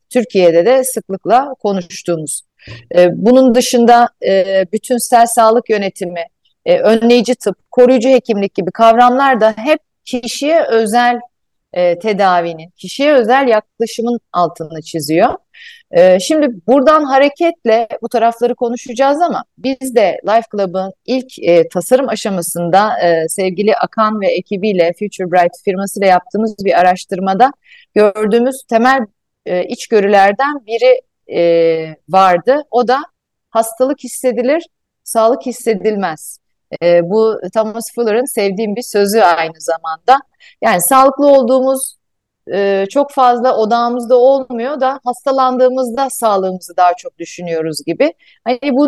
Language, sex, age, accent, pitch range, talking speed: Turkish, female, 40-59, native, 190-255 Hz, 105 wpm